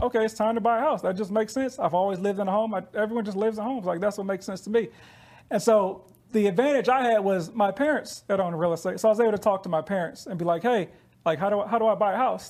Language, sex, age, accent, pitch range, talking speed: English, male, 40-59, American, 170-210 Hz, 315 wpm